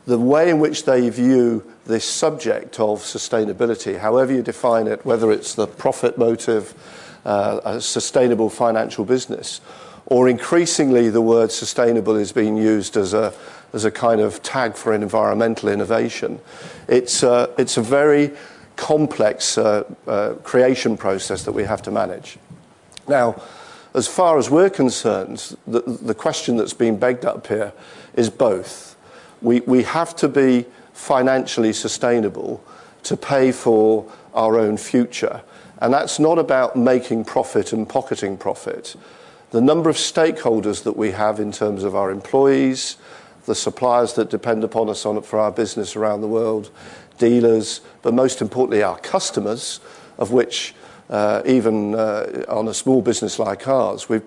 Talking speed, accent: 150 wpm, British